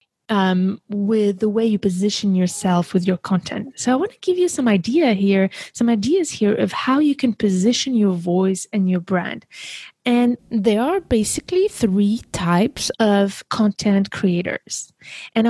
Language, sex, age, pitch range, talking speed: English, female, 20-39, 185-235 Hz, 165 wpm